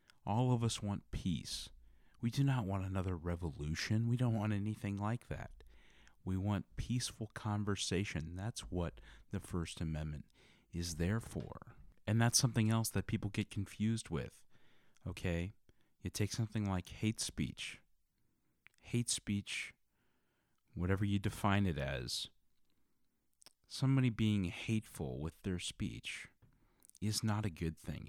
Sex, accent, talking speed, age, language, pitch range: male, American, 135 wpm, 40-59, English, 85-110 Hz